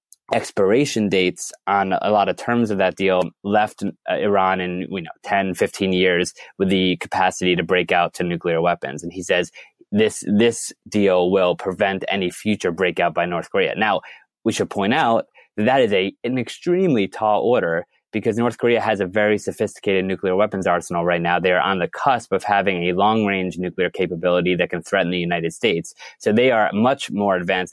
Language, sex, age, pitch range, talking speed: English, male, 20-39, 95-120 Hz, 195 wpm